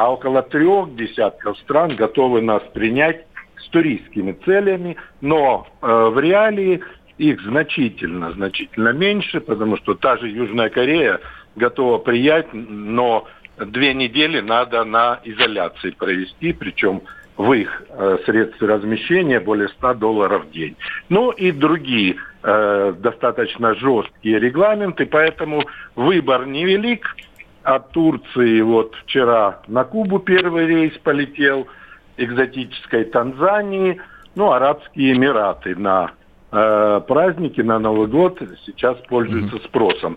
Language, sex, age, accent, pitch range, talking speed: Russian, male, 60-79, native, 115-175 Hz, 115 wpm